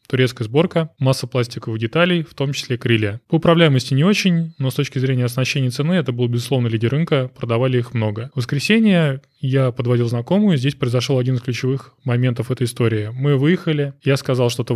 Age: 20-39